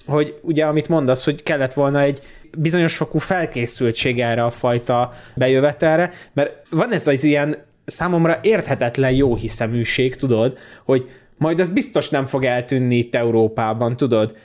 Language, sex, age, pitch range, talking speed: Hungarian, male, 20-39, 115-145 Hz, 140 wpm